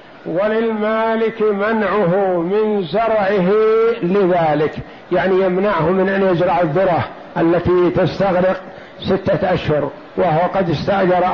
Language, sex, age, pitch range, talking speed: Arabic, male, 50-69, 180-215 Hz, 95 wpm